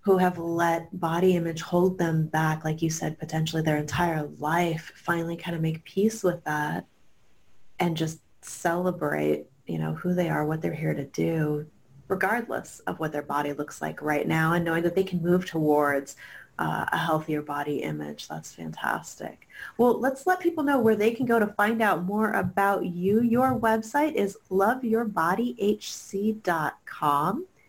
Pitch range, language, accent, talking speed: 155-205 Hz, English, American, 165 wpm